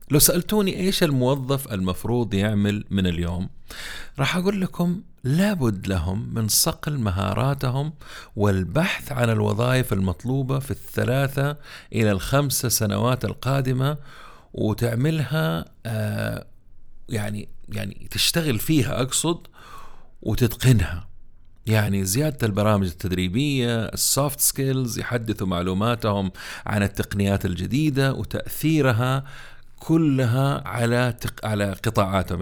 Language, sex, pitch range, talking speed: Arabic, male, 100-135 Hz, 95 wpm